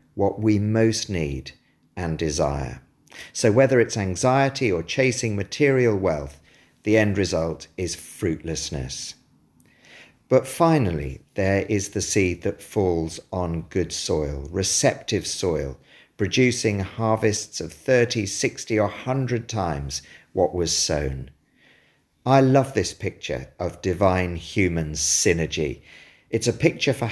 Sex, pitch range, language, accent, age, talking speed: male, 80-115 Hz, English, British, 50-69, 120 wpm